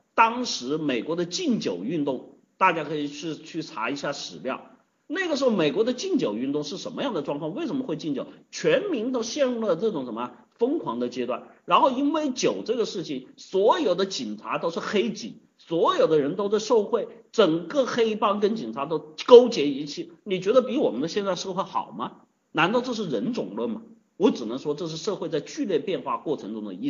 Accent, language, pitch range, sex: native, Chinese, 175-270 Hz, male